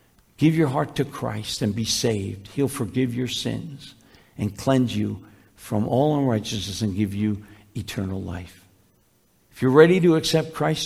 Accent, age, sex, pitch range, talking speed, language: American, 60-79, male, 100-150 Hz, 160 wpm, English